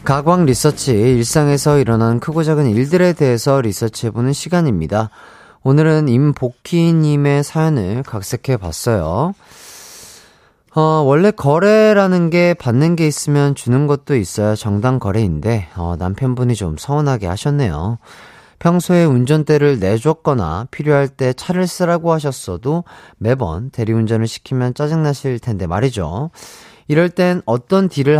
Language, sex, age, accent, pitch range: Korean, male, 30-49, native, 115-160 Hz